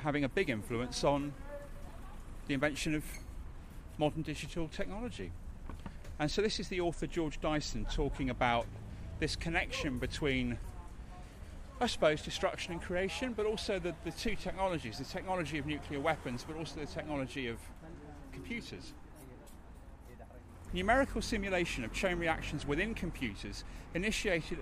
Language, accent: English, British